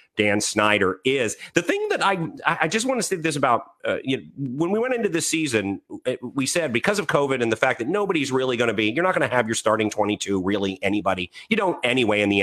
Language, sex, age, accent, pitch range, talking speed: English, male, 40-59, American, 105-150 Hz, 255 wpm